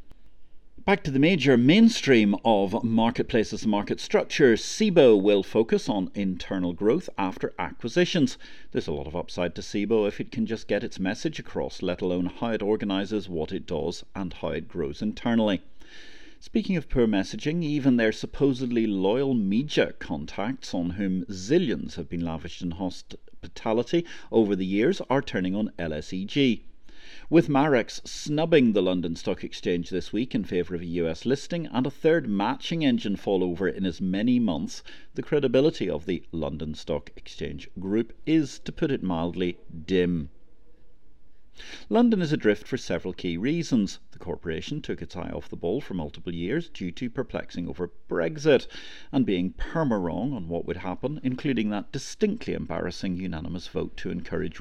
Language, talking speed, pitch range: English, 165 wpm, 90-140 Hz